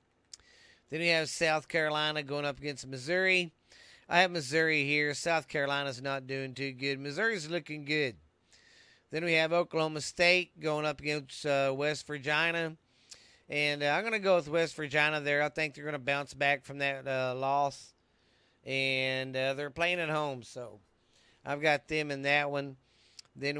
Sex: male